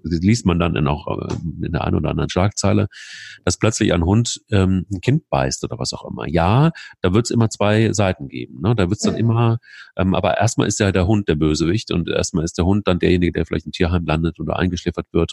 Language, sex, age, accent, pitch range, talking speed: German, male, 40-59, German, 80-105 Hz, 245 wpm